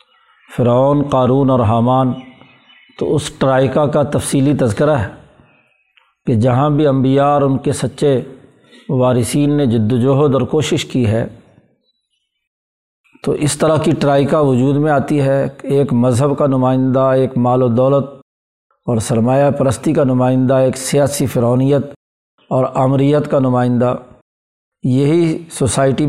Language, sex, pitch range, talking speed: Urdu, male, 125-145 Hz, 135 wpm